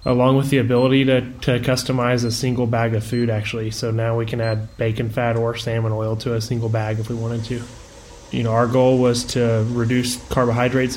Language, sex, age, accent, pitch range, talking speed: English, male, 20-39, American, 115-130 Hz, 215 wpm